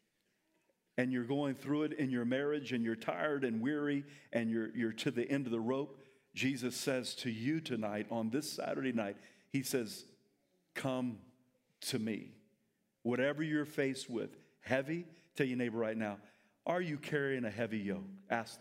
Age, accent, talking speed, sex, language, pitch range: 40-59, American, 170 wpm, male, English, 115-145 Hz